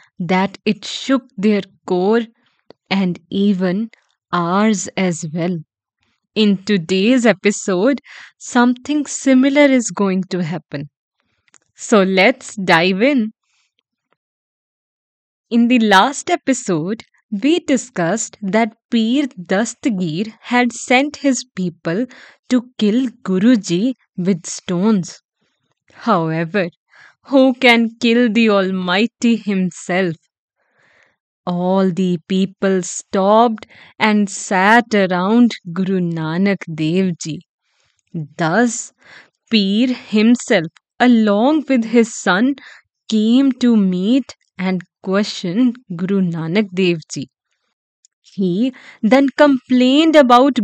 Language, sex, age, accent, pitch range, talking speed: English, female, 20-39, Indian, 185-245 Hz, 95 wpm